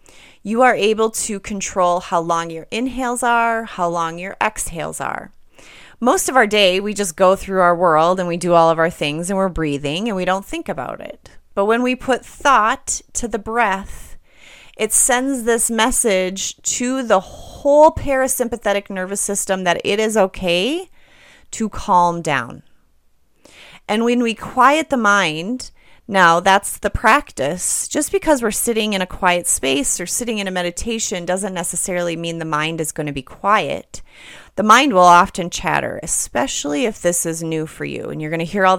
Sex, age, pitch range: female, 30-49, 170-225 Hz